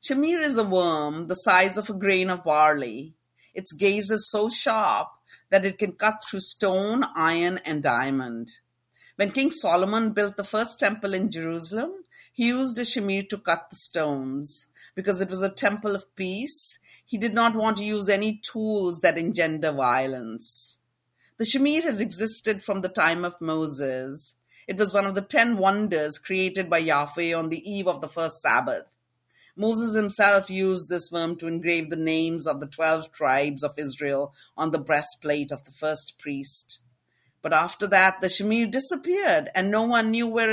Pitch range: 160-215 Hz